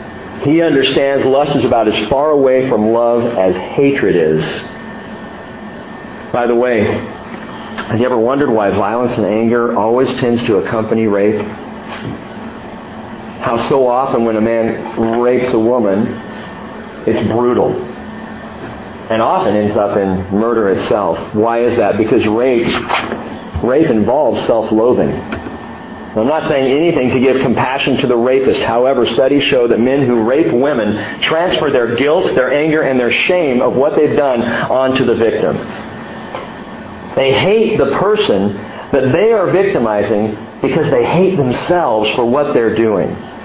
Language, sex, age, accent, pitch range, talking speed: English, male, 50-69, American, 110-140 Hz, 145 wpm